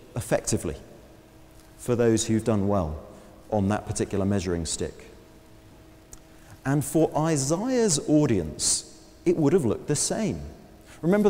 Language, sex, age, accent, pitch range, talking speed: English, male, 40-59, British, 115-180 Hz, 115 wpm